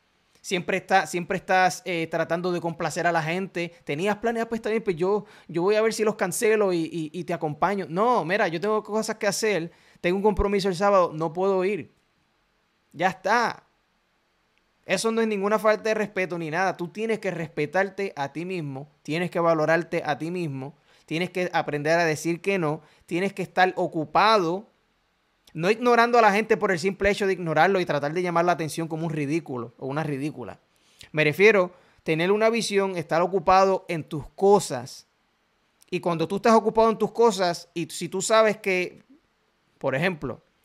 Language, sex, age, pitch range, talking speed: Spanish, male, 20-39, 165-205 Hz, 185 wpm